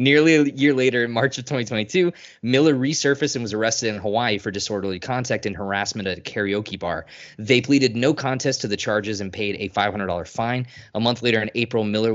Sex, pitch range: male, 100-125 Hz